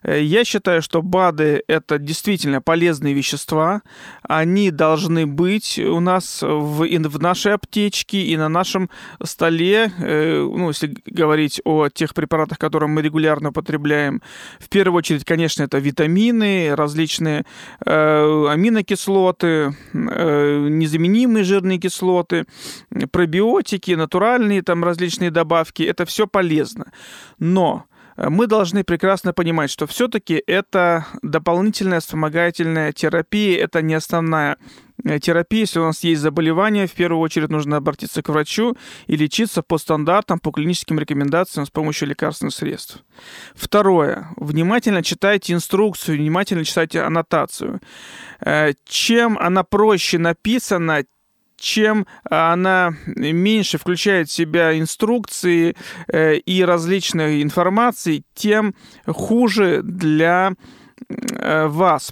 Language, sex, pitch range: Russian, male, 155-195 Hz